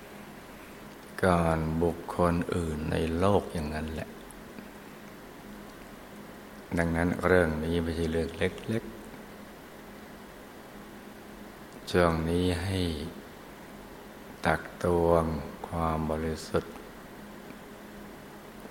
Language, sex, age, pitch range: Thai, male, 60-79, 80-90 Hz